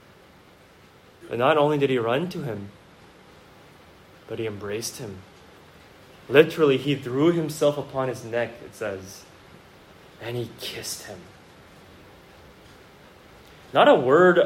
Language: English